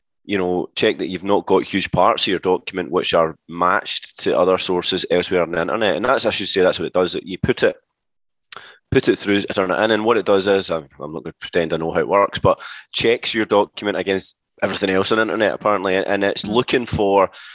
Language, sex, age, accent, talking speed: English, male, 20-39, British, 245 wpm